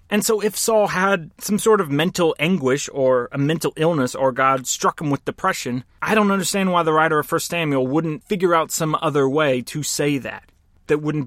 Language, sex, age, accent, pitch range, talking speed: English, male, 30-49, American, 125-180 Hz, 215 wpm